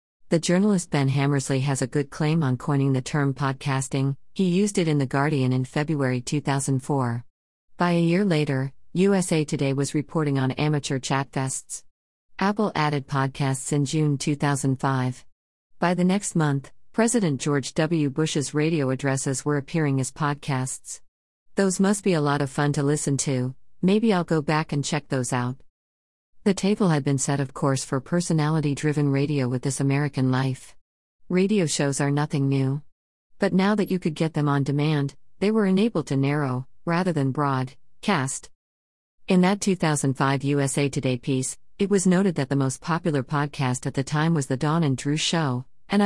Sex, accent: female, American